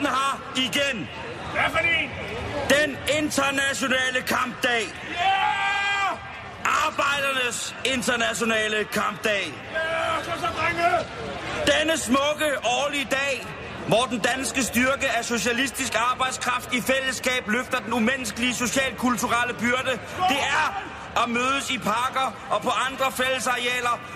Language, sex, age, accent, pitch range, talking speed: Danish, male, 40-59, native, 240-290 Hz, 90 wpm